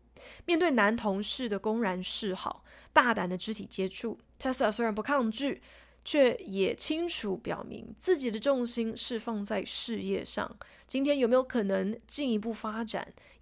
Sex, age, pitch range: female, 20-39, 200-255 Hz